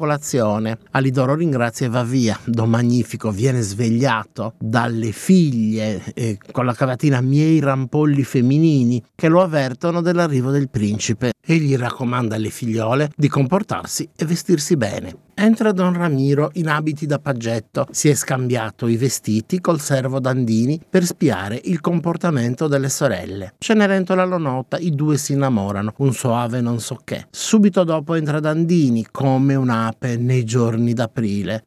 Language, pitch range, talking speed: Italian, 115-155 Hz, 140 wpm